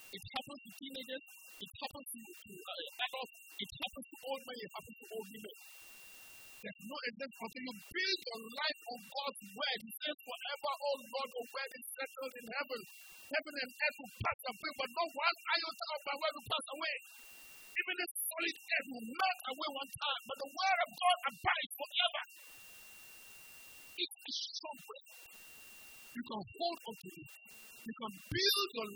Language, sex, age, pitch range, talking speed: English, male, 50-69, 250-335 Hz, 170 wpm